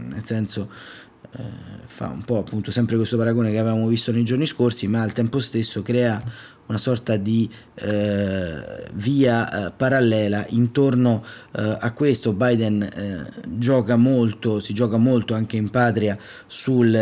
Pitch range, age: 105-125 Hz, 30-49